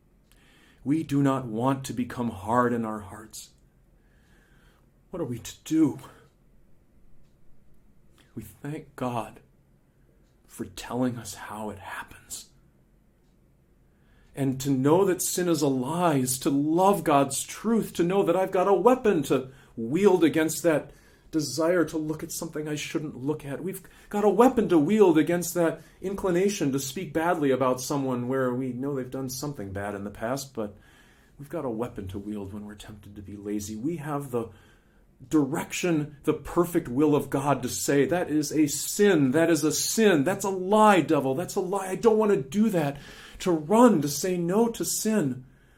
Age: 40-59